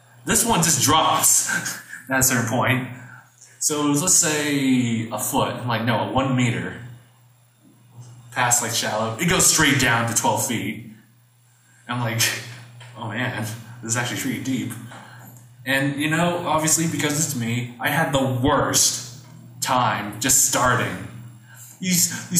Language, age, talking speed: English, 20-39, 145 wpm